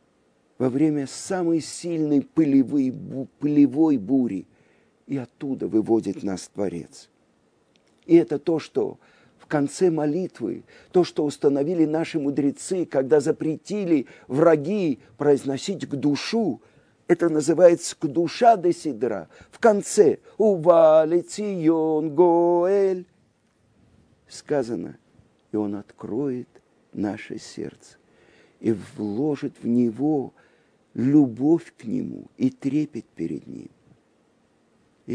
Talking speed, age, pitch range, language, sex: 100 wpm, 50-69, 135-180 Hz, Russian, male